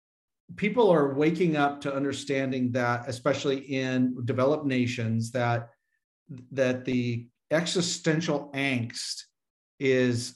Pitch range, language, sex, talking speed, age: 125-145 Hz, English, male, 100 wpm, 40-59